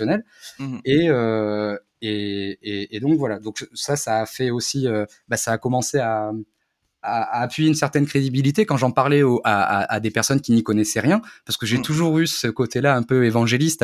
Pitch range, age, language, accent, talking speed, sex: 115-145 Hz, 20-39, French, French, 210 wpm, male